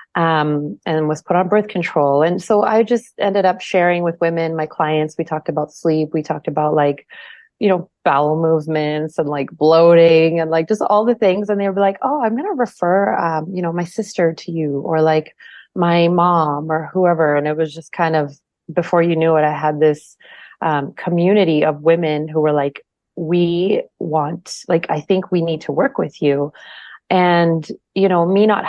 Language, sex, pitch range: English, female, 155-185 Hz